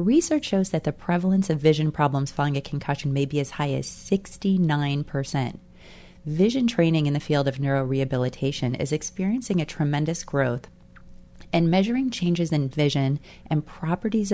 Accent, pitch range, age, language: American, 140-170 Hz, 30-49, English